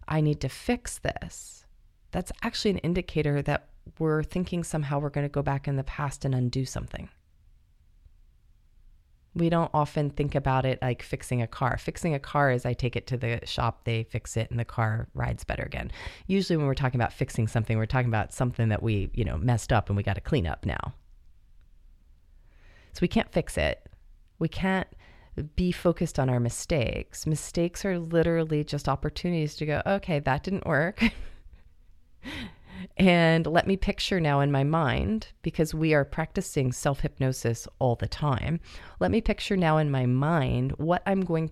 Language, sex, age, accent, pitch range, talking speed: English, female, 30-49, American, 115-160 Hz, 180 wpm